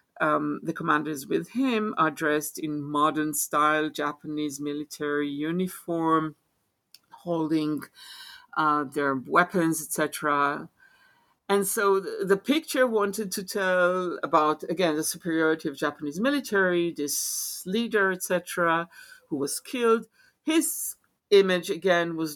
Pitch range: 150-200 Hz